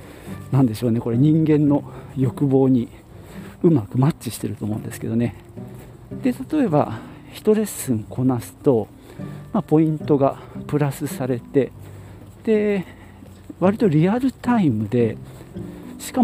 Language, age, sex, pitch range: Japanese, 50-69, male, 115-160 Hz